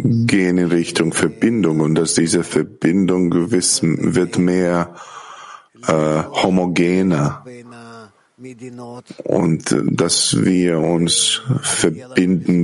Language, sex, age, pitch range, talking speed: German, male, 50-69, 85-115 Hz, 85 wpm